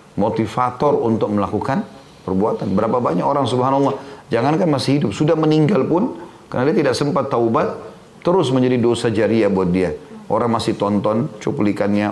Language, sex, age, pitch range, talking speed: Indonesian, male, 30-49, 100-125 Hz, 145 wpm